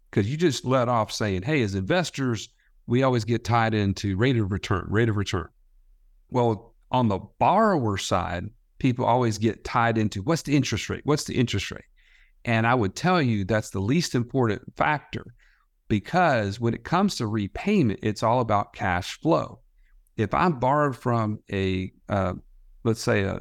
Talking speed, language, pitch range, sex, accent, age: 175 wpm, English, 105-135 Hz, male, American, 50-69